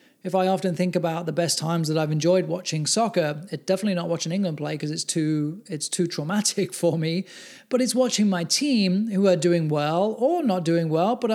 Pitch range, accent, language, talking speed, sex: 155-195 Hz, British, English, 215 wpm, male